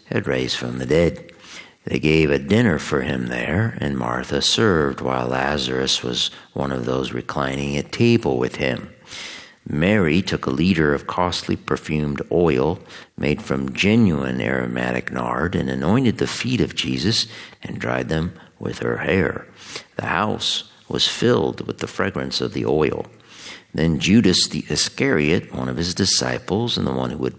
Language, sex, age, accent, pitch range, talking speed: English, male, 50-69, American, 65-85 Hz, 160 wpm